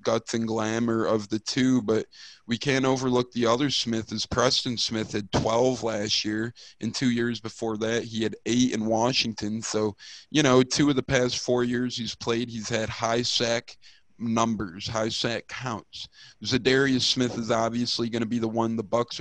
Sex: male